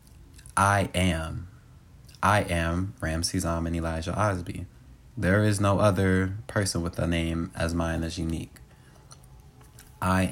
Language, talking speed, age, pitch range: English, 130 wpm, 20-39, 85-100 Hz